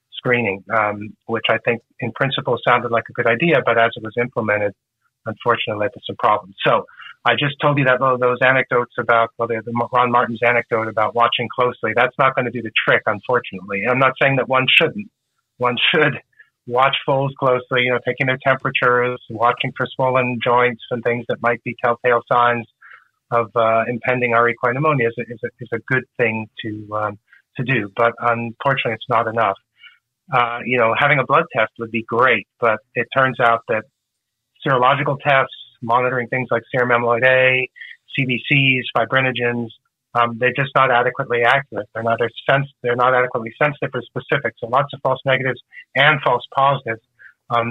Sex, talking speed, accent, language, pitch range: male, 185 wpm, American, English, 115-130 Hz